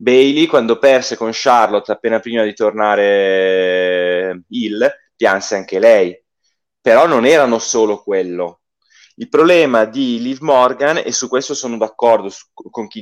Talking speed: 145 wpm